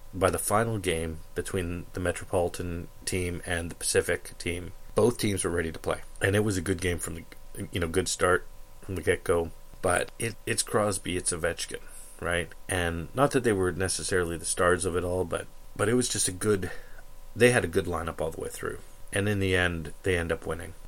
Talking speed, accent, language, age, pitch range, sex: 215 wpm, American, English, 30-49, 85-105 Hz, male